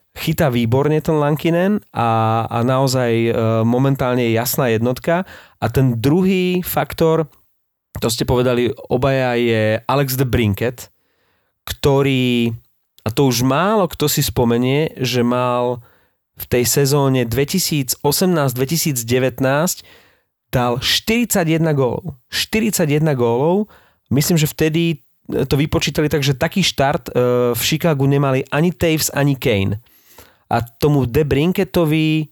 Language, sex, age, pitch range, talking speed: Slovak, male, 30-49, 125-160 Hz, 115 wpm